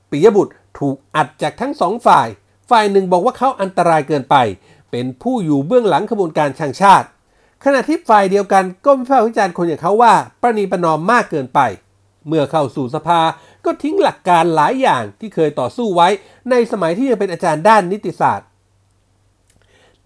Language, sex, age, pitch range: Thai, male, 60-79, 155-235 Hz